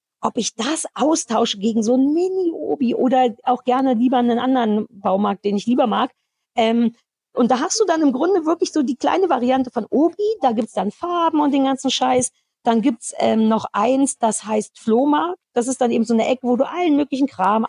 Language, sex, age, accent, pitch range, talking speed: German, female, 40-59, German, 215-270 Hz, 215 wpm